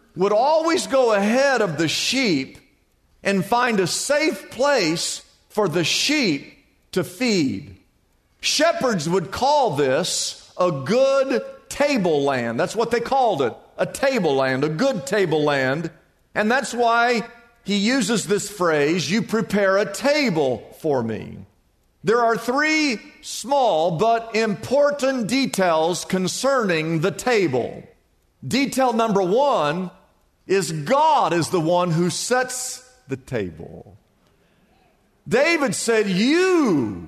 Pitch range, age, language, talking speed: 185-270 Hz, 50-69, English, 125 wpm